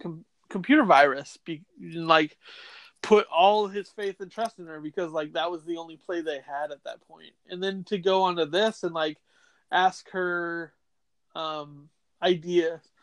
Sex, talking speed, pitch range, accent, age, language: male, 170 wpm, 155-195 Hz, American, 20-39, English